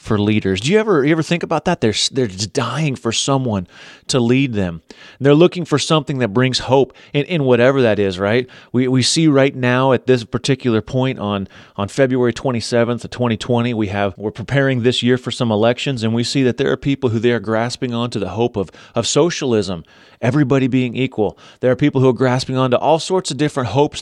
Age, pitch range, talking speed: 30-49, 115-135 Hz, 225 wpm